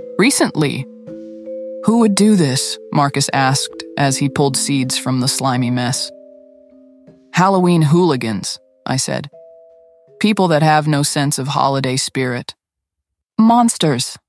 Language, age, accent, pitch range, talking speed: English, 20-39, American, 130-160 Hz, 120 wpm